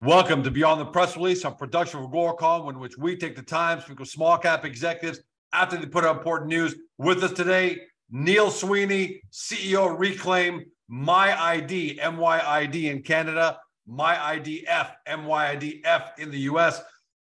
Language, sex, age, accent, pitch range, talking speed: English, male, 50-69, American, 145-175 Hz, 160 wpm